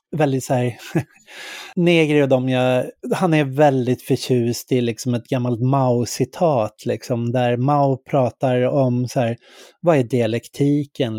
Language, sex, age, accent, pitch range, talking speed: English, male, 30-49, Swedish, 125-155 Hz, 130 wpm